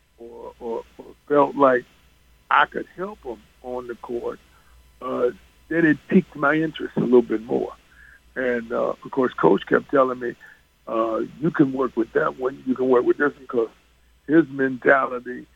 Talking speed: 175 wpm